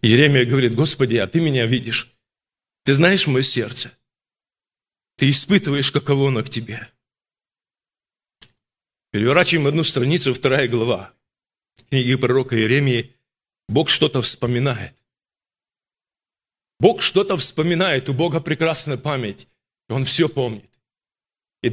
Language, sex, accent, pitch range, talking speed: Russian, male, native, 130-180 Hz, 110 wpm